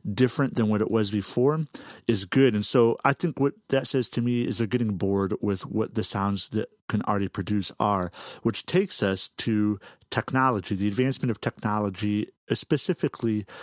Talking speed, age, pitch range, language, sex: 175 wpm, 40-59, 100-130 Hz, English, male